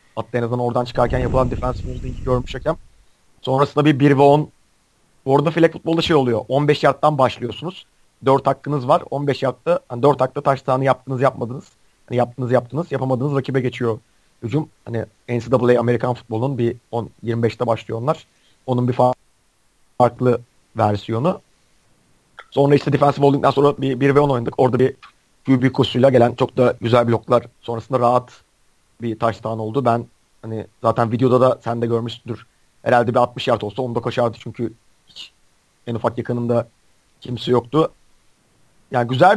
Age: 40-59